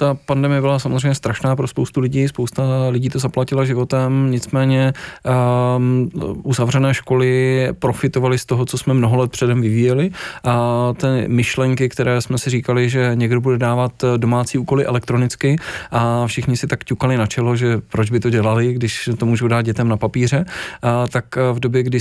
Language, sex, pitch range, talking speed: Czech, male, 120-130 Hz, 175 wpm